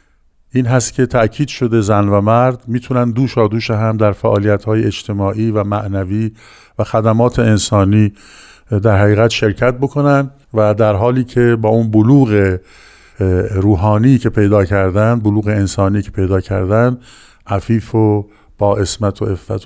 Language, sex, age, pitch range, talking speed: Persian, male, 50-69, 105-120 Hz, 145 wpm